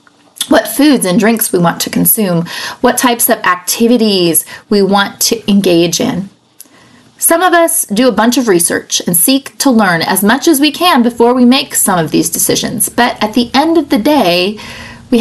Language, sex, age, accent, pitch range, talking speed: English, female, 30-49, American, 195-255 Hz, 195 wpm